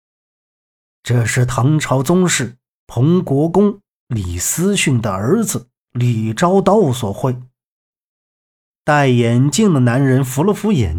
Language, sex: Chinese, male